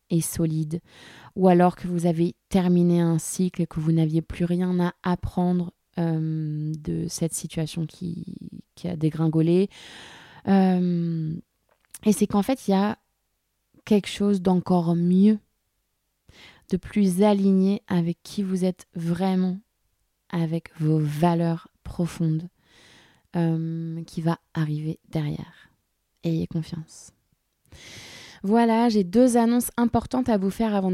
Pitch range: 165-200 Hz